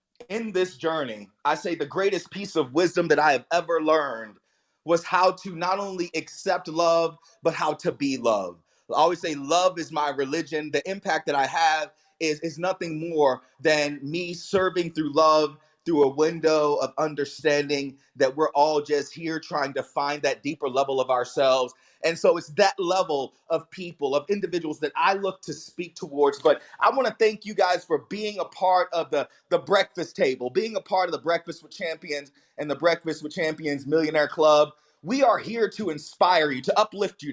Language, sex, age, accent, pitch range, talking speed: English, male, 30-49, American, 155-205 Hz, 195 wpm